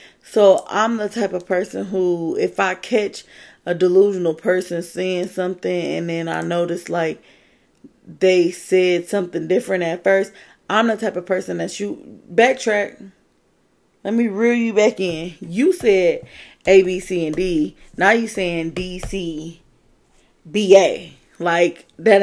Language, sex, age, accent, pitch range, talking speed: English, female, 20-39, American, 175-215 Hz, 150 wpm